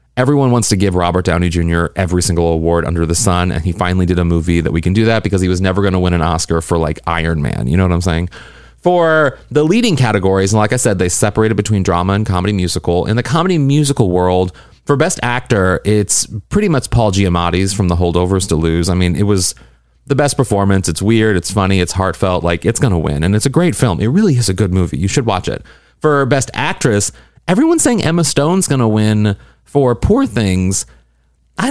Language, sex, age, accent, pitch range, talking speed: English, male, 30-49, American, 90-140 Hz, 230 wpm